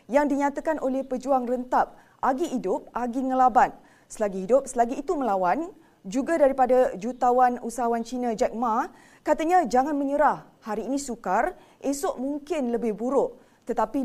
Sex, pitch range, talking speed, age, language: female, 235-275 Hz, 135 wpm, 20-39, Malay